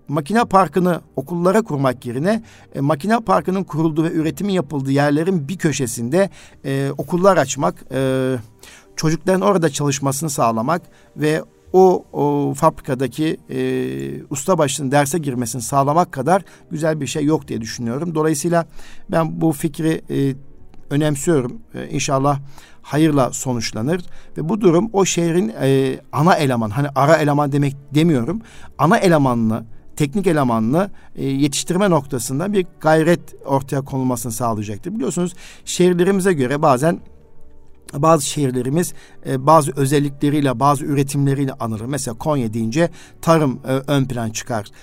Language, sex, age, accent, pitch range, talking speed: Turkish, male, 50-69, native, 125-165 Hz, 125 wpm